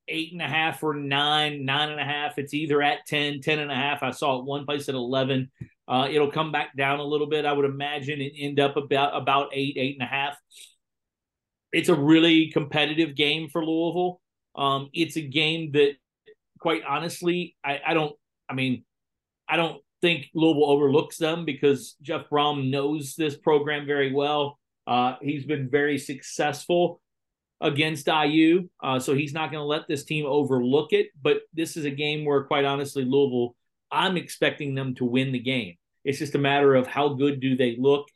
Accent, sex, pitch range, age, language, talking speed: American, male, 135-150 Hz, 40-59, English, 195 wpm